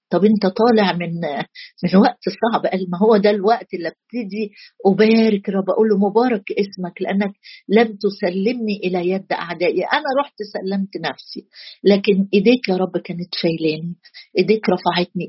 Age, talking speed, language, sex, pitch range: 50-69, 145 wpm, Arabic, female, 185-215 Hz